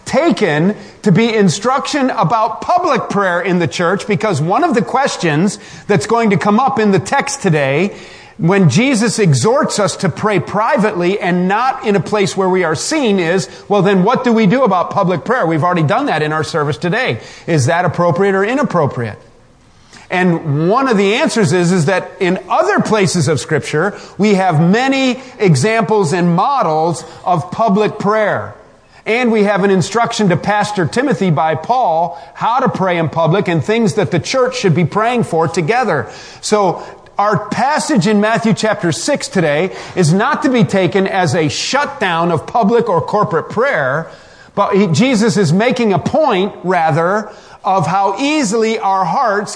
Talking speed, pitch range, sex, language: 175 wpm, 175-220 Hz, male, English